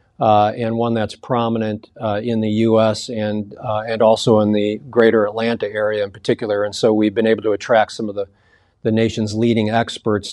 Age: 40-59